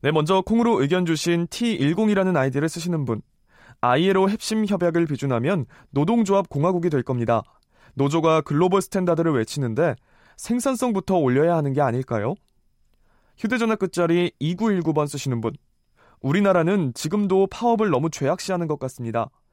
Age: 20-39